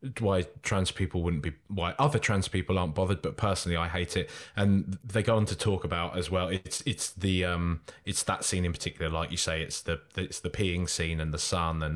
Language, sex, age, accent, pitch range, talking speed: English, male, 20-39, British, 85-110 Hz, 235 wpm